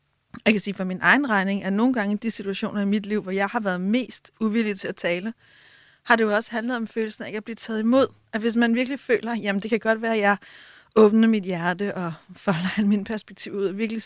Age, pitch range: 30-49, 205-235 Hz